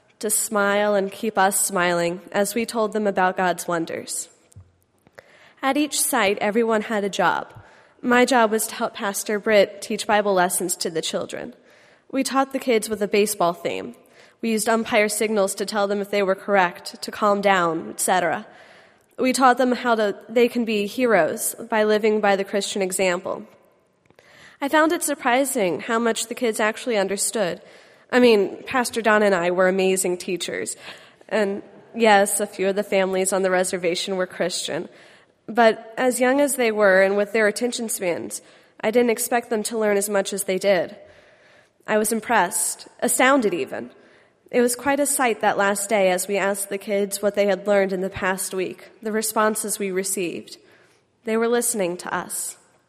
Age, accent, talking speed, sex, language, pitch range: 20-39, American, 180 wpm, female, English, 195-230 Hz